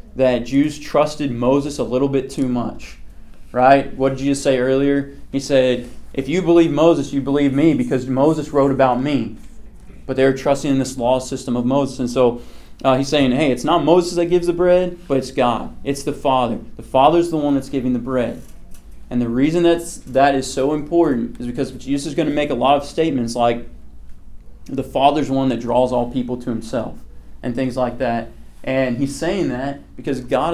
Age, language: 20-39, English